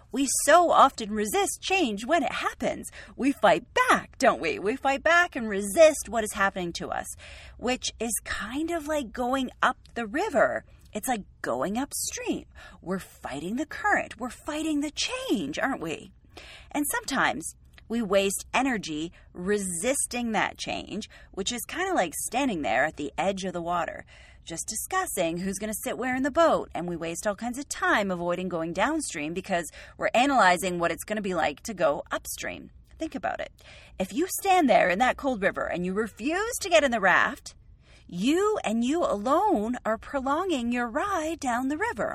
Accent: American